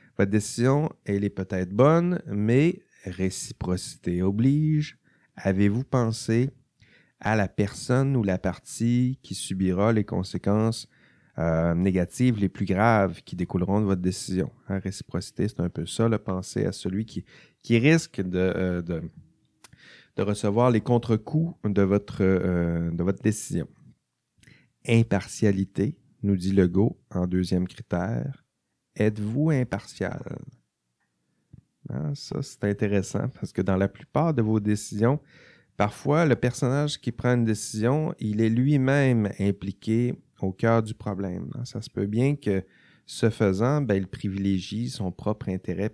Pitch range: 95-125 Hz